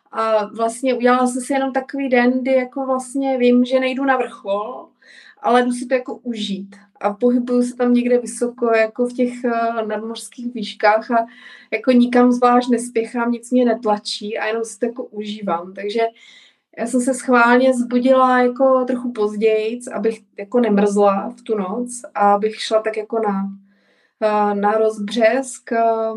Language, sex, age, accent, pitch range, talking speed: Czech, female, 20-39, native, 215-245 Hz, 160 wpm